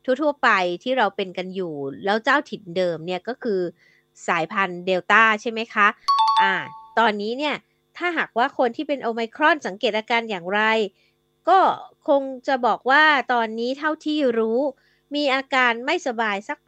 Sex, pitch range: female, 195-260 Hz